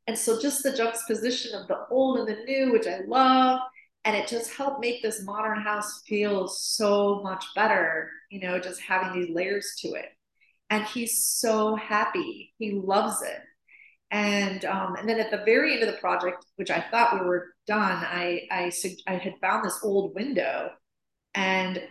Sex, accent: female, American